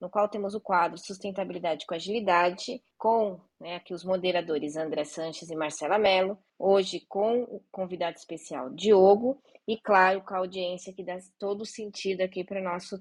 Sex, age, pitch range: female, 20-39, 180-220 Hz